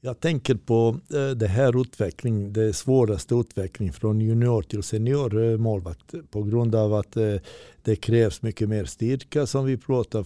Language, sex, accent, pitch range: Swedish, male, native, 105-115 Hz